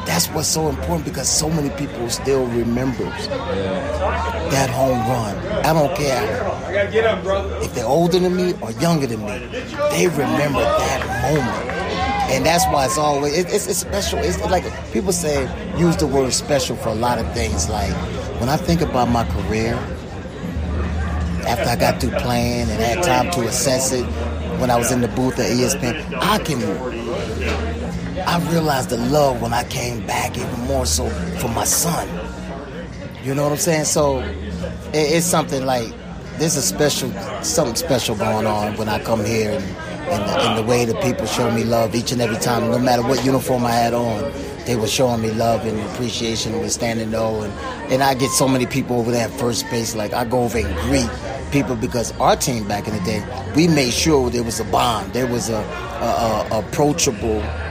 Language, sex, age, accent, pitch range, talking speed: English, male, 30-49, American, 110-135 Hz, 190 wpm